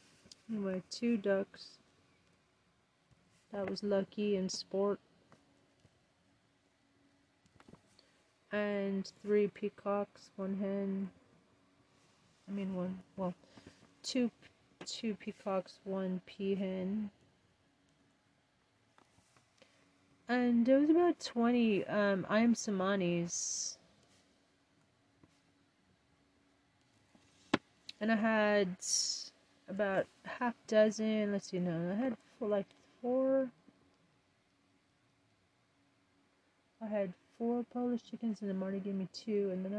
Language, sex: English, female